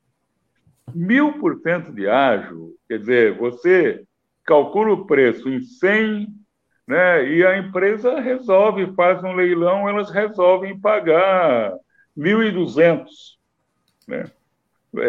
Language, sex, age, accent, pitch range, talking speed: Portuguese, male, 60-79, Brazilian, 140-235 Hz, 90 wpm